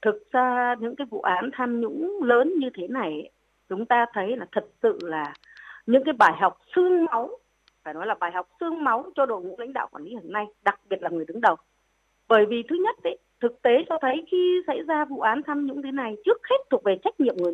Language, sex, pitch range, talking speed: Vietnamese, female, 235-350 Hz, 245 wpm